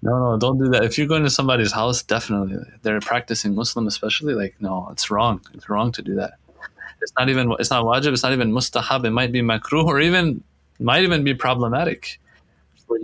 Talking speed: 210 wpm